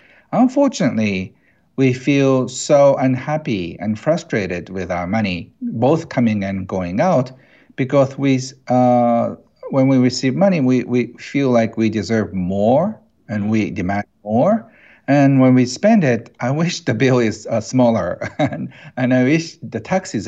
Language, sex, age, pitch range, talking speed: English, male, 50-69, 115-150 Hz, 150 wpm